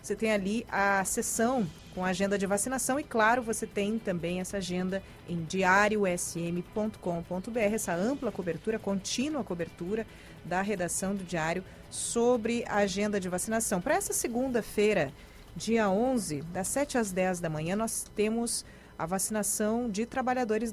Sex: female